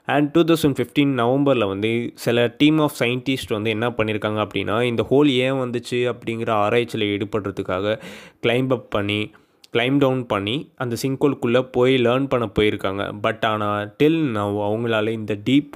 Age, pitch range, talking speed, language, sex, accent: 20-39, 110-135 Hz, 150 wpm, Tamil, male, native